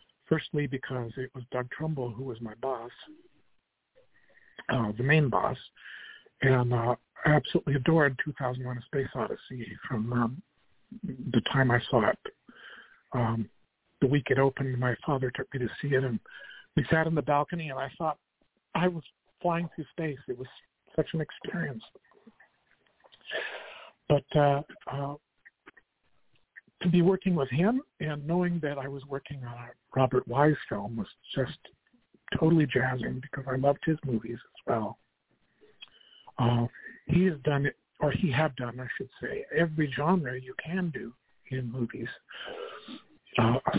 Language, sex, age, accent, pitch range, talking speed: English, male, 50-69, American, 125-160 Hz, 150 wpm